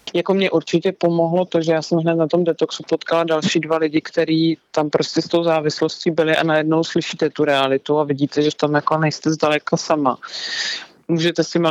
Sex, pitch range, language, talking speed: male, 145-160 Hz, Slovak, 205 wpm